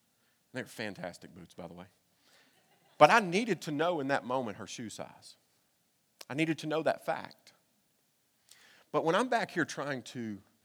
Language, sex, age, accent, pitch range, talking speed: English, male, 40-59, American, 110-145 Hz, 170 wpm